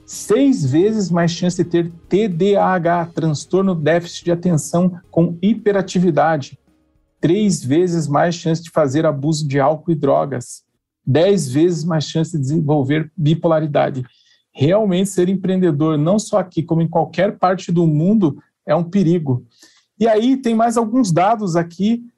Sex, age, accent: male, 40-59, Brazilian